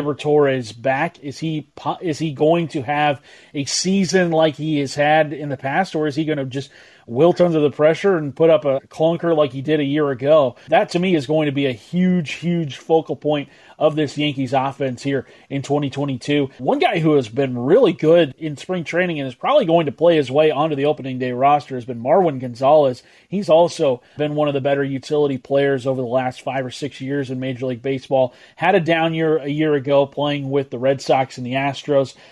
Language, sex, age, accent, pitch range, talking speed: English, male, 30-49, American, 135-155 Hz, 220 wpm